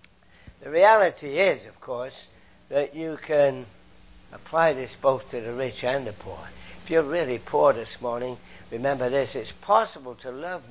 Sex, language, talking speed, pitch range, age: male, English, 165 wpm, 110-170 Hz, 60-79